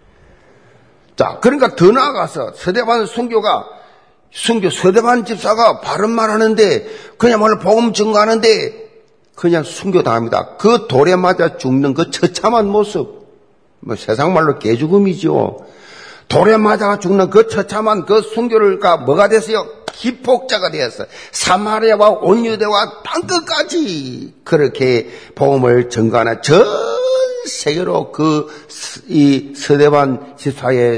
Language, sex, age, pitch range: Korean, male, 50-69, 145-235 Hz